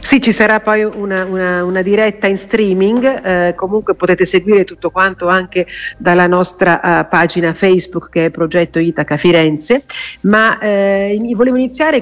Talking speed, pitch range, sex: 160 wpm, 170-200 Hz, female